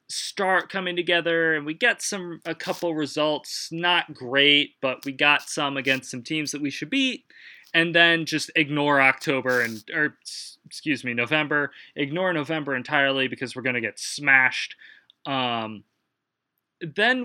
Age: 20-39